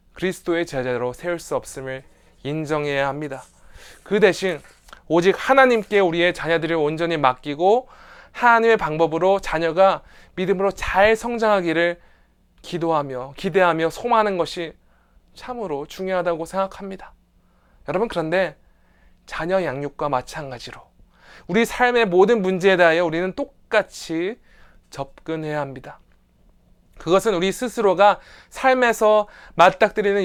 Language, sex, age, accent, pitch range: Korean, male, 20-39, native, 155-215 Hz